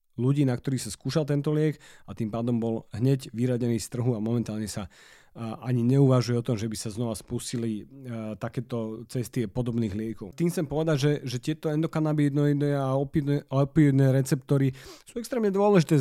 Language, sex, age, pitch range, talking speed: Slovak, male, 40-59, 130-170 Hz, 170 wpm